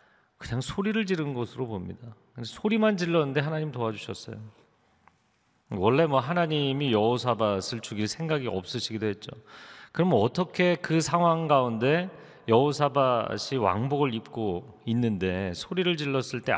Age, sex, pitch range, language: 40-59, male, 105-140 Hz, Korean